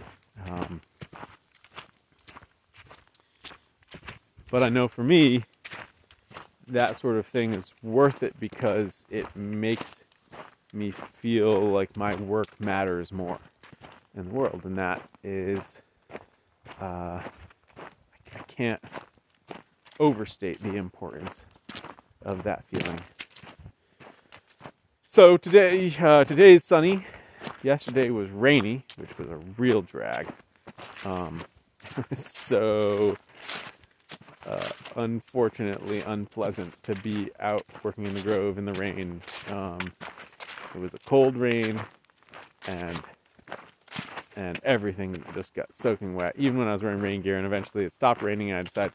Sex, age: male, 30-49